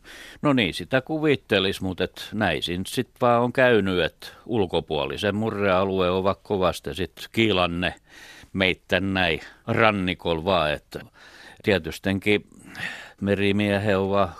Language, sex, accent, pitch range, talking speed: Finnish, male, native, 85-100 Hz, 100 wpm